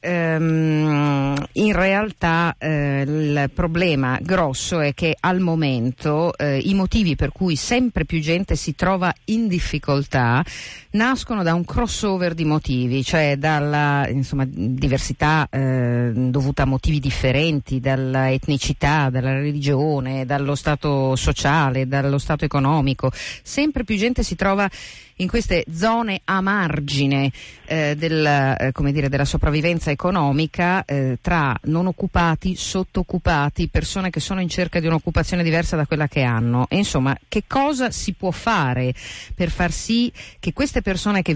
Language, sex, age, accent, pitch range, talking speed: Italian, female, 50-69, native, 140-185 Hz, 135 wpm